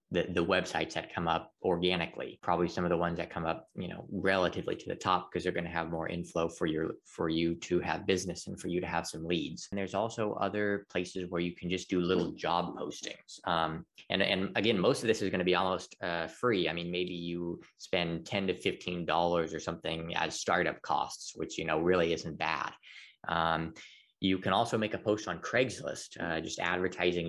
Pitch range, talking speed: 85-95 Hz, 220 wpm